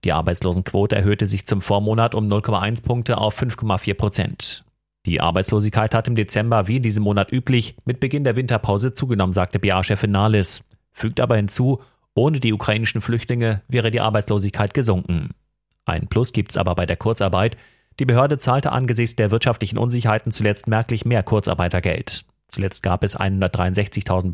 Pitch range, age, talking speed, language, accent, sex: 95-115 Hz, 30-49, 160 wpm, German, German, male